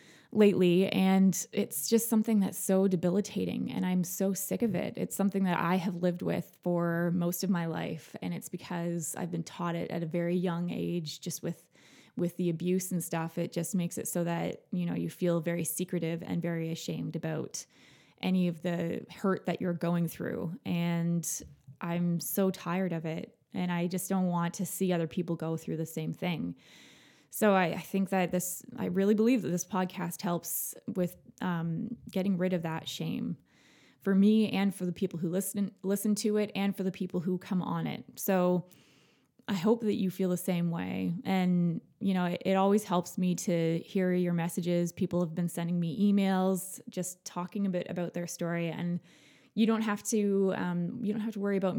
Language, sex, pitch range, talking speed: English, female, 170-195 Hz, 200 wpm